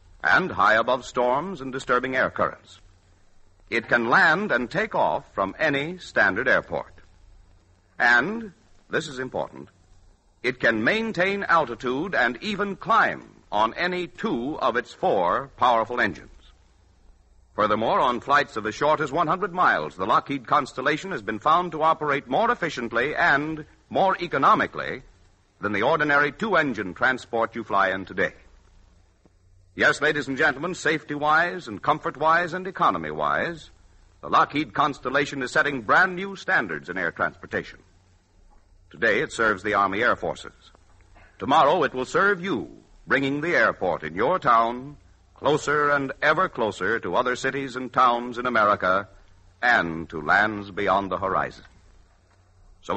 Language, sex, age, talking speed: English, male, 60-79, 140 wpm